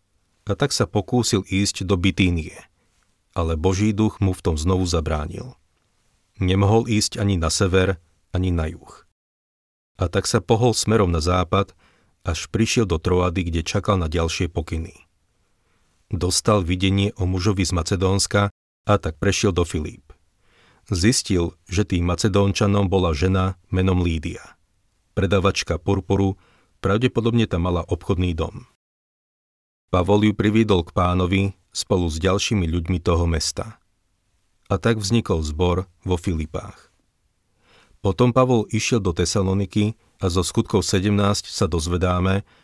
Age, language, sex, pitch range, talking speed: 40-59, Slovak, male, 90-100 Hz, 130 wpm